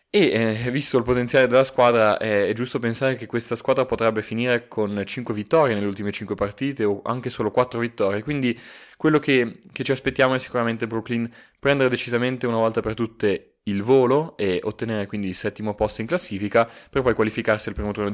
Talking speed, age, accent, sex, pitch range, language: 190 wpm, 20-39, native, male, 105-125 Hz, Italian